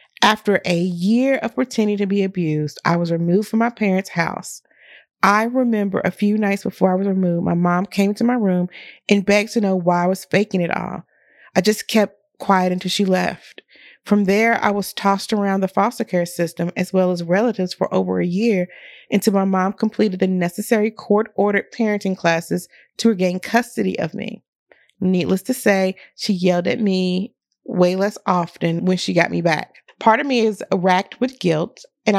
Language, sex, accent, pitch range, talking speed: English, female, American, 180-210 Hz, 190 wpm